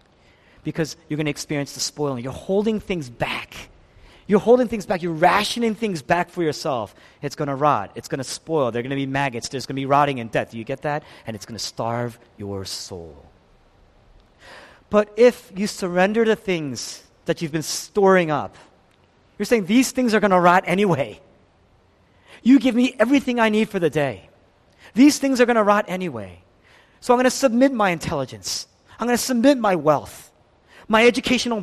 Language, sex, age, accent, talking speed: English, male, 30-49, American, 195 wpm